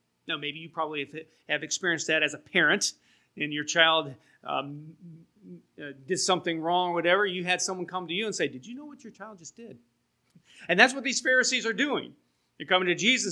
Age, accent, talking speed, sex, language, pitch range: 40-59, American, 205 wpm, male, English, 140-230 Hz